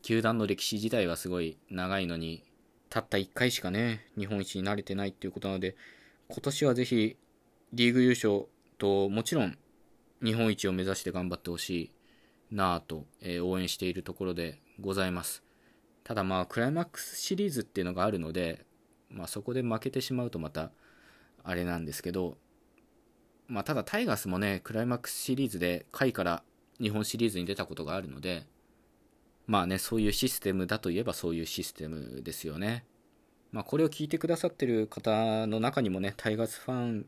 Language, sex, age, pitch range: Japanese, male, 20-39, 90-120 Hz